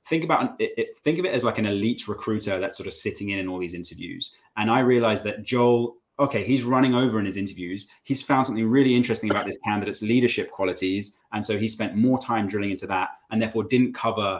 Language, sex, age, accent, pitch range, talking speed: English, male, 20-39, British, 100-125 Hz, 230 wpm